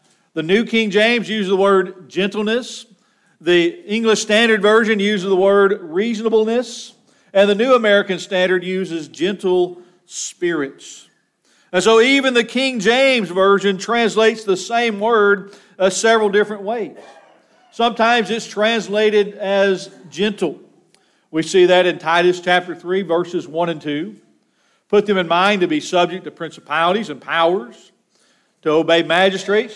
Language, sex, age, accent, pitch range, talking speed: English, male, 40-59, American, 180-220 Hz, 140 wpm